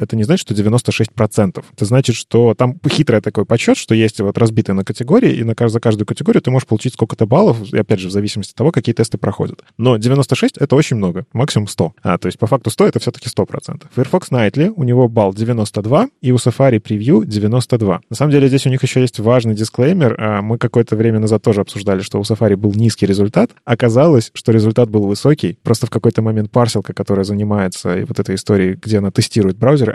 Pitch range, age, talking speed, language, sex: 105-130 Hz, 20-39, 220 wpm, Russian, male